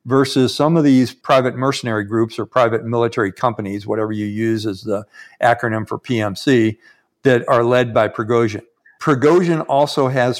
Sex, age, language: male, 50-69, English